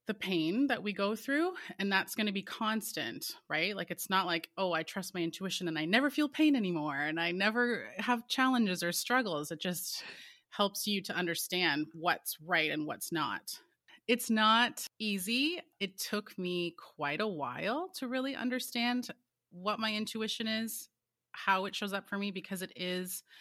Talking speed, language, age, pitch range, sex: 180 wpm, English, 30-49, 170-220 Hz, female